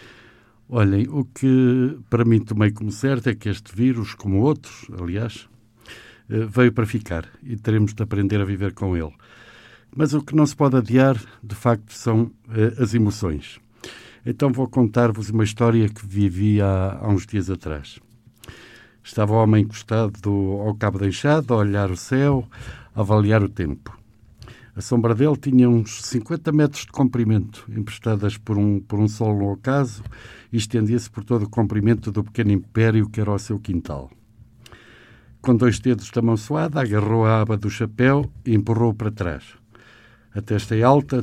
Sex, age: male, 60-79